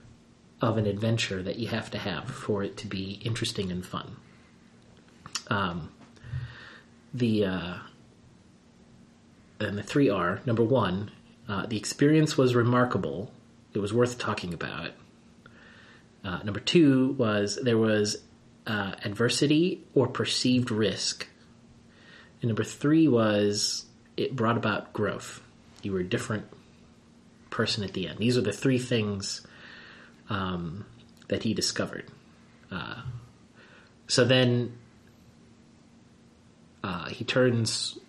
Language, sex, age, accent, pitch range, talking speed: English, male, 30-49, American, 100-120 Hz, 120 wpm